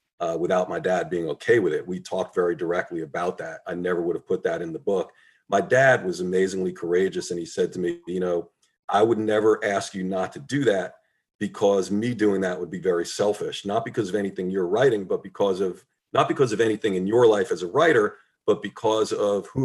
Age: 40-59